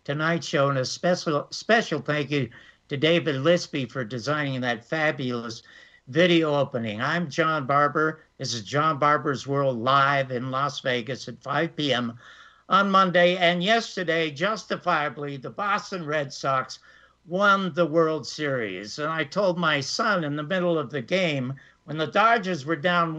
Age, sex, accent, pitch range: 60-79, male, American, 145-195 Hz